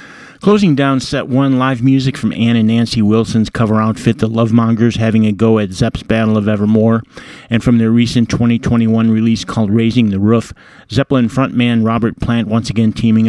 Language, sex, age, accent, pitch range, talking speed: English, male, 40-59, American, 110-125 Hz, 180 wpm